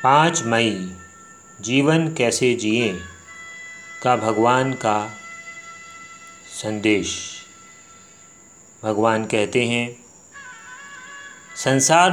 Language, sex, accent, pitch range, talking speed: Hindi, male, native, 115-170 Hz, 65 wpm